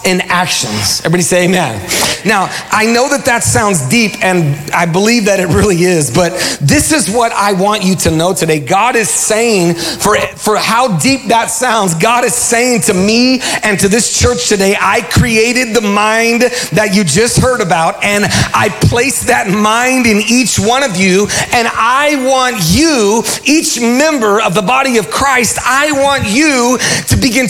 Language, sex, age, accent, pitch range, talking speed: English, male, 40-59, American, 175-235 Hz, 180 wpm